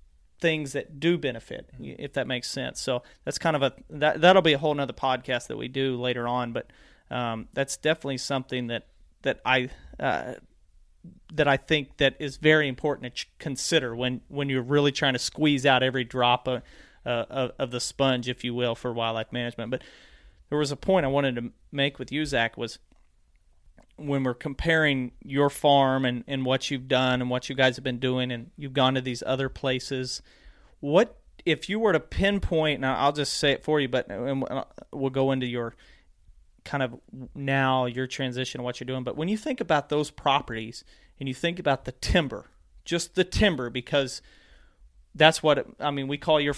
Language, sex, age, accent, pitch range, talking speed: English, male, 40-59, American, 125-145 Hz, 195 wpm